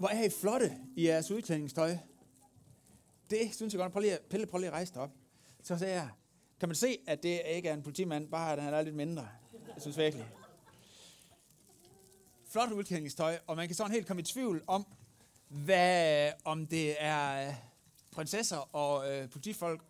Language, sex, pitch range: Danish, male, 145-200 Hz